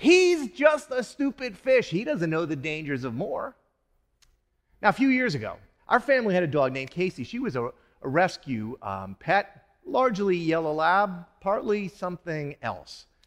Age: 40-59